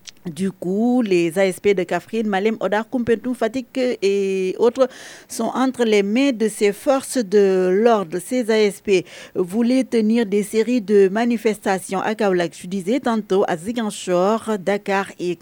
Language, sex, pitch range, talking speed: French, female, 195-235 Hz, 150 wpm